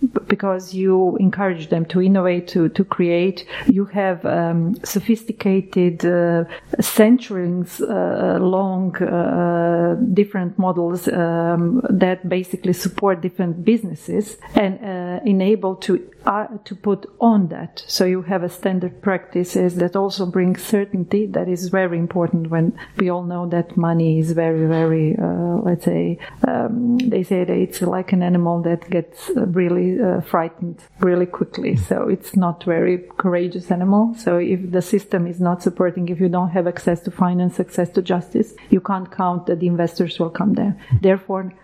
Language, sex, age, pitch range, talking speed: Croatian, female, 40-59, 175-200 Hz, 160 wpm